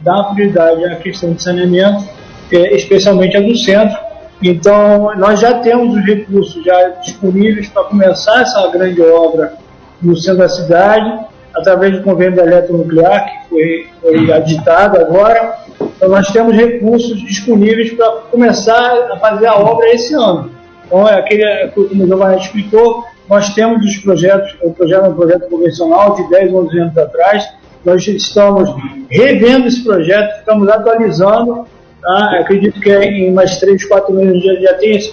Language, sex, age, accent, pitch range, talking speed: Portuguese, male, 20-39, Brazilian, 180-220 Hz, 160 wpm